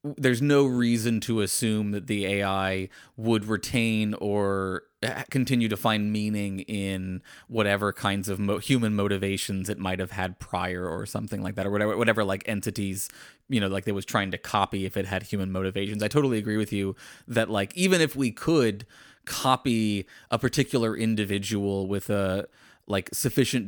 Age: 30-49